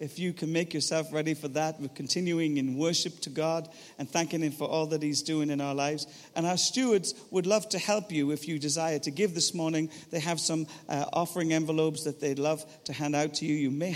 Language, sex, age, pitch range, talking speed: English, male, 50-69, 145-180 Hz, 240 wpm